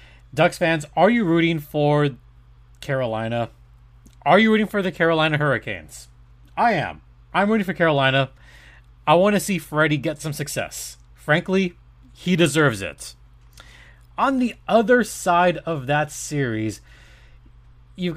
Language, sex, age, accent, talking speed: English, male, 30-49, American, 130 wpm